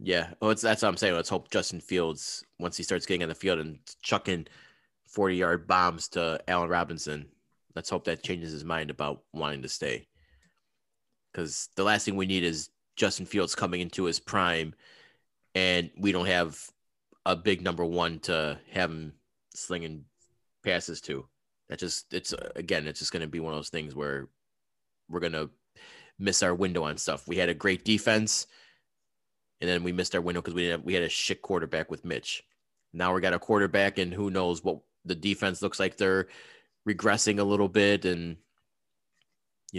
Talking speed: 190 wpm